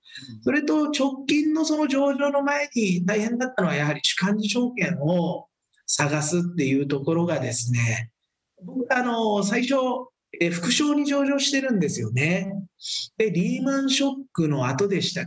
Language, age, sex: Japanese, 40-59, male